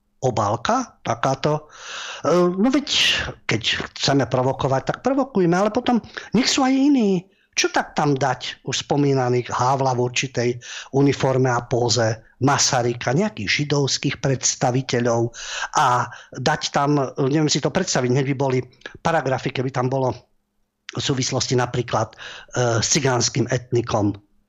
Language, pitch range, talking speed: Slovak, 125-170 Hz, 125 wpm